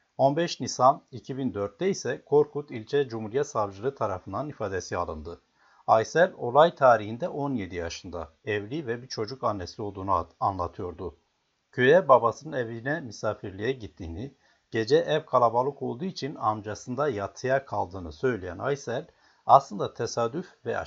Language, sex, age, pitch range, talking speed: Turkish, male, 60-79, 100-135 Hz, 120 wpm